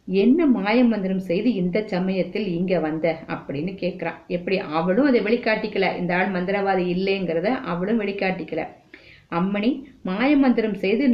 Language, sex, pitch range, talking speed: Tamil, female, 175-230 Hz, 90 wpm